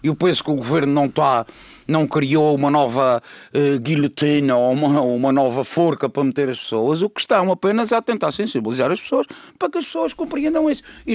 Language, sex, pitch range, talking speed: Portuguese, male, 145-235 Hz, 215 wpm